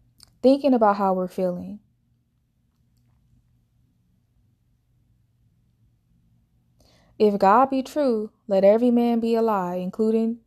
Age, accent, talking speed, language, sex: 20-39, American, 90 wpm, English, female